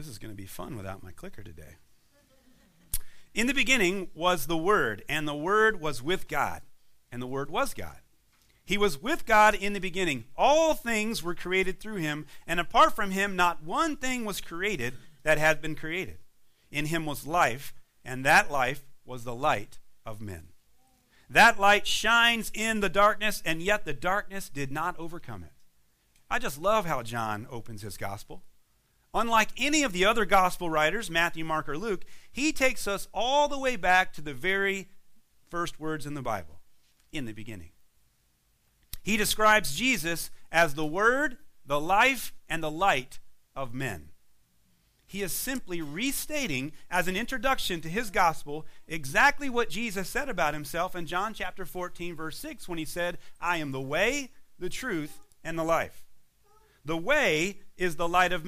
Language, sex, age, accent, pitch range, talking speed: English, male, 40-59, American, 145-210 Hz, 175 wpm